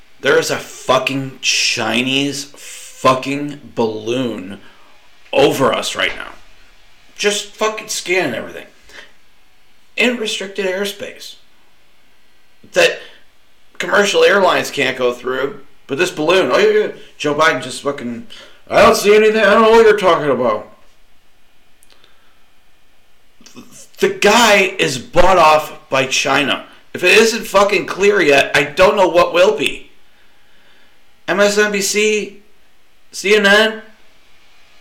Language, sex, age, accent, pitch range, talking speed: English, male, 40-59, American, 130-215 Hz, 115 wpm